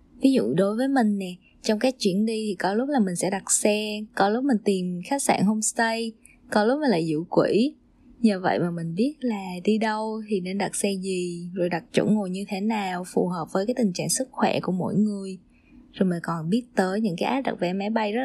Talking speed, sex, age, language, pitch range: 245 wpm, female, 20-39, Vietnamese, 185-225 Hz